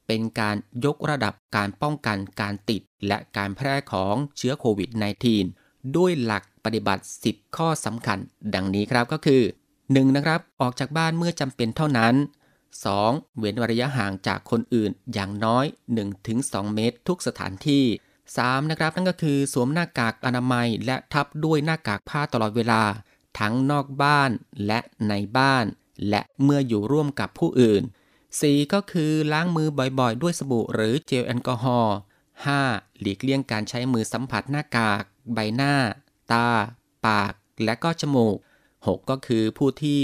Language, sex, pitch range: Thai, male, 110-145 Hz